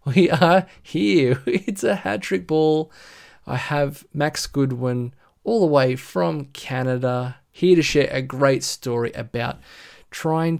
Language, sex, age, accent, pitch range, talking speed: English, male, 20-39, Australian, 125-145 Hz, 135 wpm